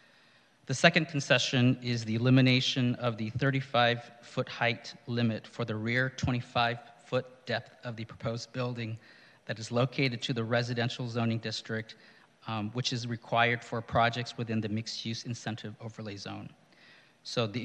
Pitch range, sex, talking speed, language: 115-125 Hz, male, 155 wpm, English